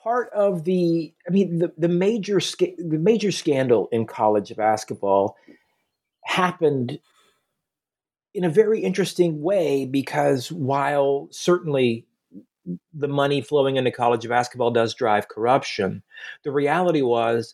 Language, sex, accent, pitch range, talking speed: English, male, American, 115-170 Hz, 125 wpm